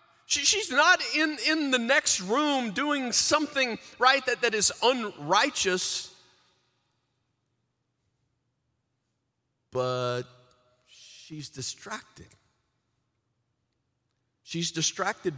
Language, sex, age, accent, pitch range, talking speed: English, male, 40-59, American, 110-155 Hz, 75 wpm